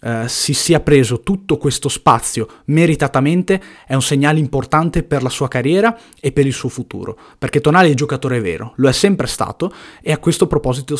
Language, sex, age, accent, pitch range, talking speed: Italian, male, 20-39, native, 125-155 Hz, 190 wpm